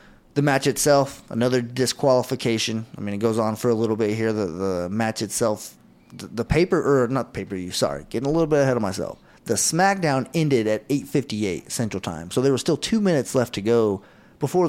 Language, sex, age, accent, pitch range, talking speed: English, male, 30-49, American, 105-130 Hz, 210 wpm